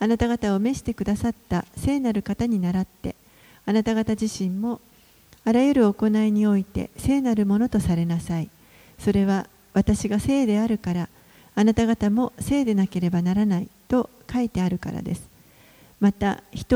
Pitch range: 195-235 Hz